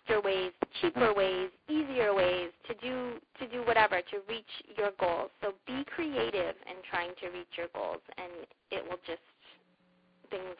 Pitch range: 170-215 Hz